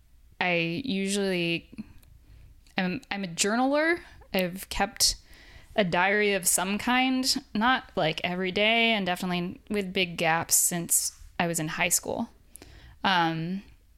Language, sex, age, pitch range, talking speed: English, female, 10-29, 175-205 Hz, 125 wpm